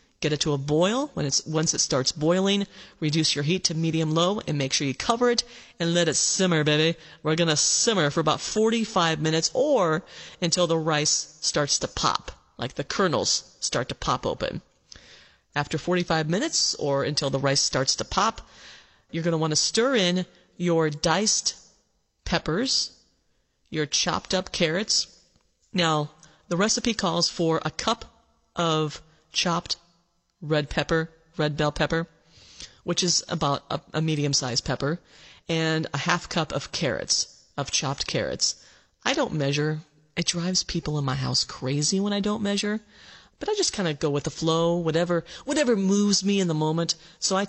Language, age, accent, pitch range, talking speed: English, 30-49, American, 150-185 Hz, 170 wpm